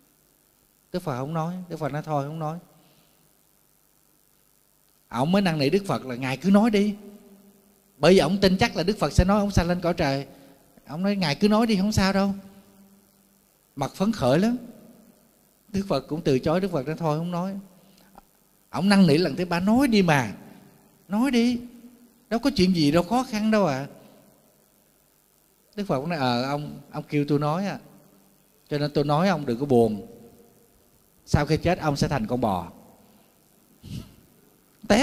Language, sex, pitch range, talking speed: Vietnamese, male, 150-200 Hz, 185 wpm